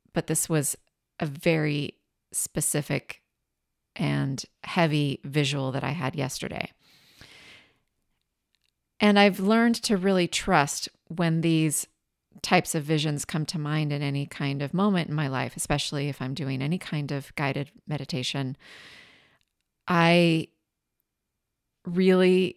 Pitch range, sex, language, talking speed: 140-175 Hz, female, English, 120 wpm